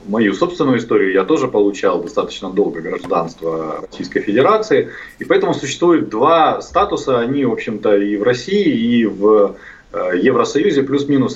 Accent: native